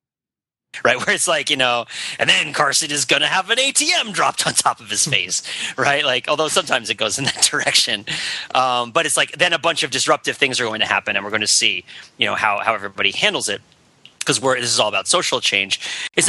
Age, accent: 30-49, American